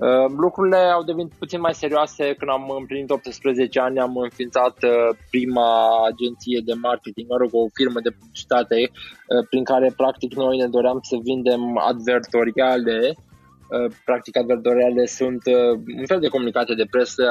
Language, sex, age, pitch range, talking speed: Romanian, male, 20-39, 115-130 Hz, 140 wpm